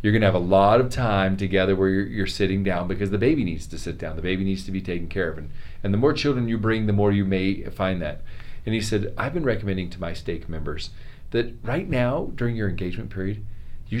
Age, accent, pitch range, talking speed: 40-59, American, 85-110 Hz, 255 wpm